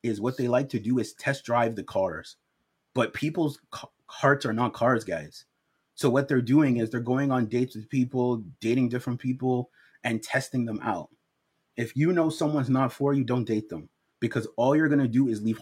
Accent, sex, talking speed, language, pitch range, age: American, male, 210 wpm, English, 125-160 Hz, 30-49